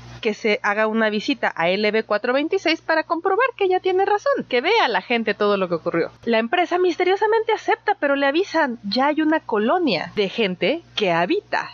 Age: 30-49